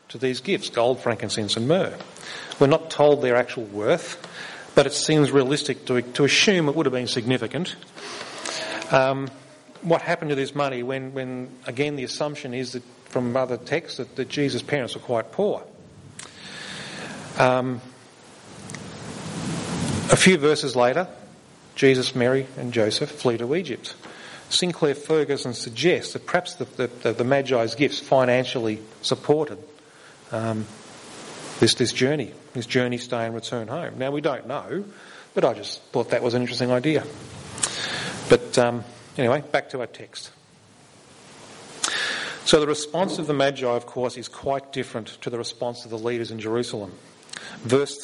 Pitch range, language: 120-145 Hz, English